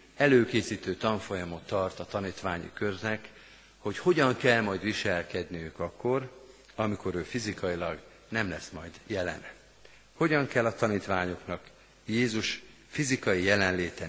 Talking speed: 115 wpm